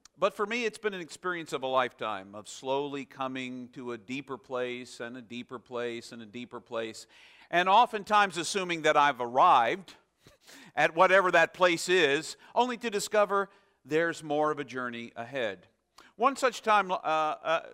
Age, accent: 50-69, American